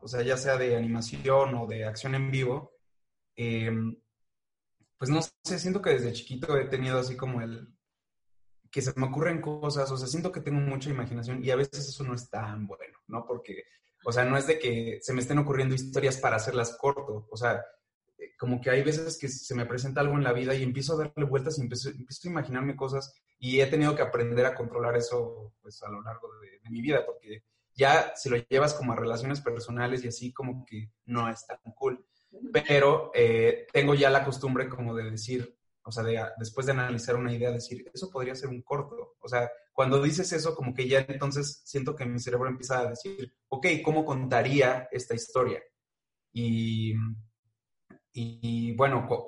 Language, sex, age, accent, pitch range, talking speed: Spanish, male, 20-39, Mexican, 120-140 Hz, 205 wpm